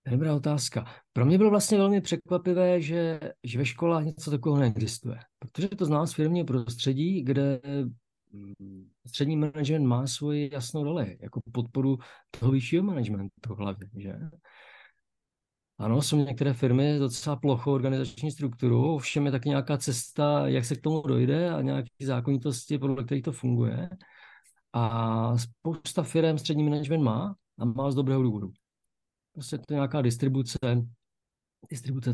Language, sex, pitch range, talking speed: Czech, male, 120-150 Hz, 145 wpm